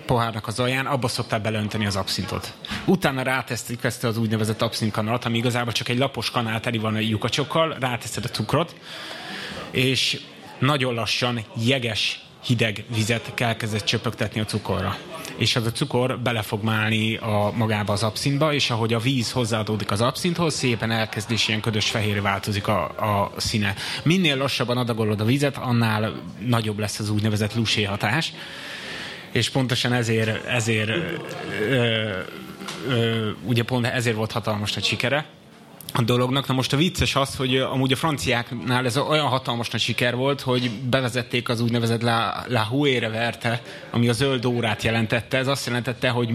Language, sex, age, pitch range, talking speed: Hungarian, male, 30-49, 110-130 Hz, 160 wpm